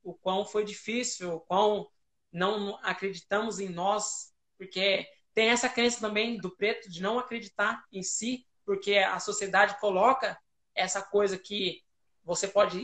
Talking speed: 145 wpm